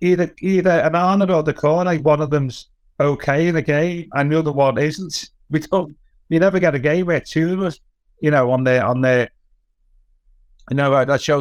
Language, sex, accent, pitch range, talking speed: English, male, British, 130-165 Hz, 210 wpm